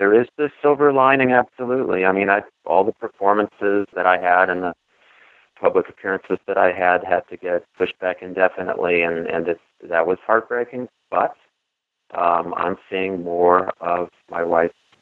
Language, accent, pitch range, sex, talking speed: English, American, 85-110 Hz, male, 160 wpm